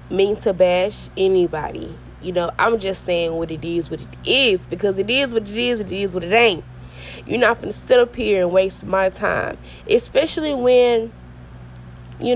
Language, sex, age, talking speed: English, female, 20-39, 190 wpm